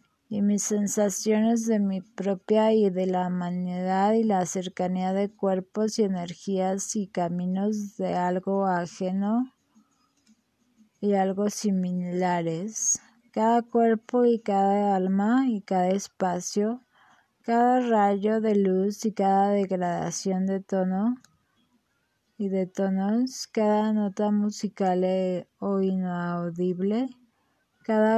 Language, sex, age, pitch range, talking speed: English, female, 20-39, 185-215 Hz, 110 wpm